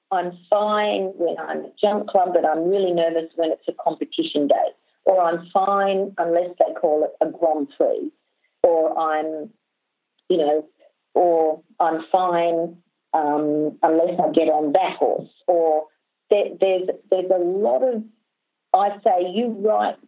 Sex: female